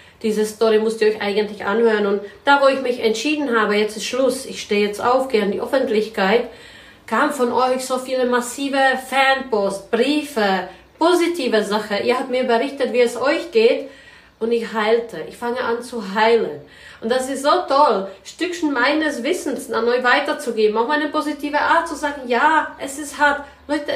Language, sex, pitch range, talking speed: German, female, 235-320 Hz, 185 wpm